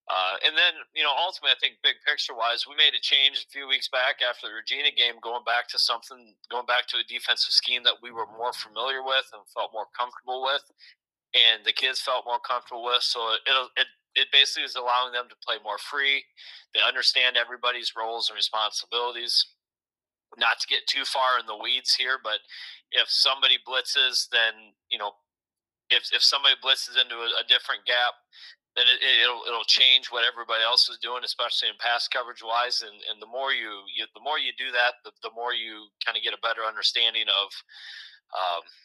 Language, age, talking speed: English, 30-49, 200 wpm